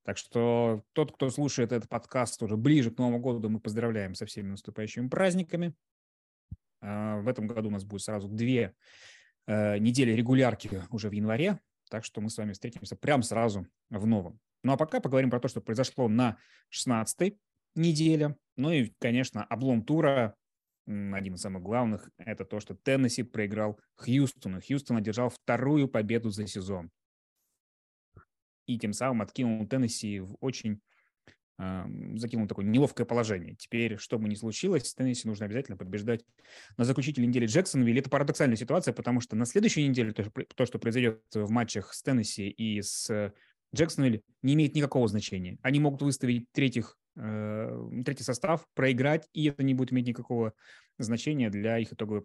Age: 20-39